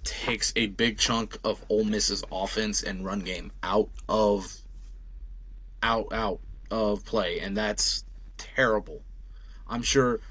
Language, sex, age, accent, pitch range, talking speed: English, male, 20-39, American, 95-120 Hz, 130 wpm